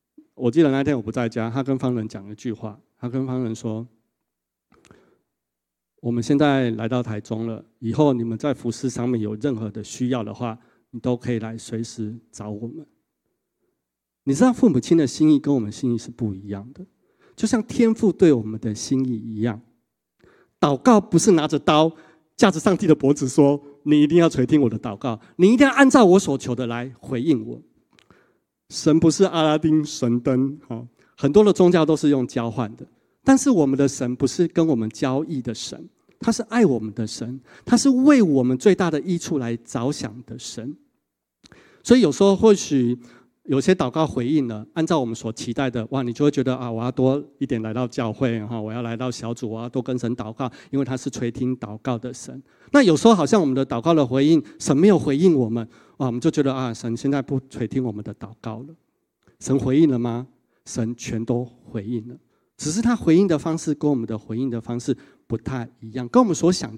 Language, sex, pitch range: Chinese, male, 115-155 Hz